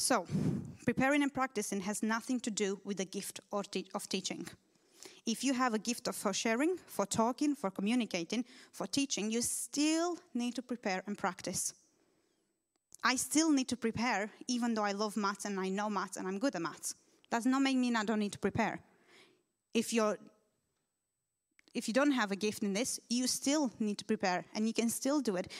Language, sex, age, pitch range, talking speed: English, female, 30-49, 200-250 Hz, 190 wpm